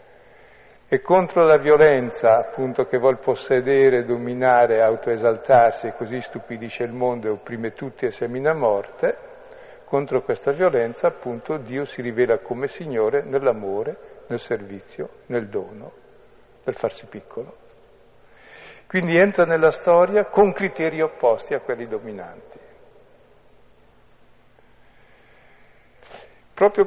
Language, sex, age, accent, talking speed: Italian, male, 50-69, native, 110 wpm